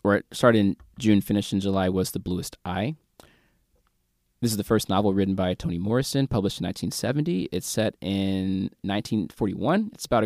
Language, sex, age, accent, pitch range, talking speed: English, male, 20-39, American, 95-115 Hz, 175 wpm